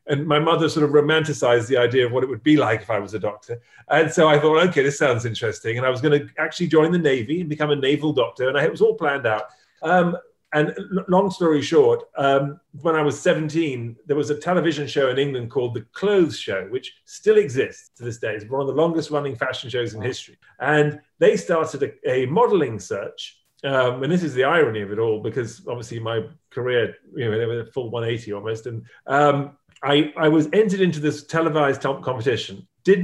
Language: English